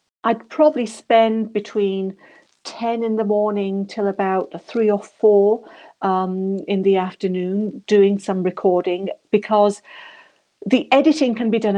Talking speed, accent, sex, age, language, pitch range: 130 wpm, British, female, 50-69, English, 170-215 Hz